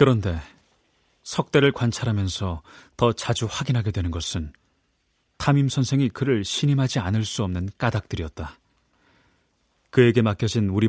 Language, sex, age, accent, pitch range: Korean, male, 30-49, native, 90-120 Hz